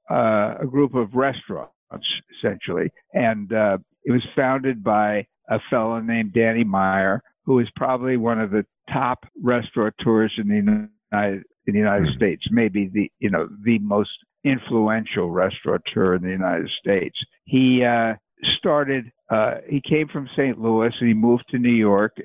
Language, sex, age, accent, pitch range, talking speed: Croatian, male, 60-79, American, 110-135 Hz, 160 wpm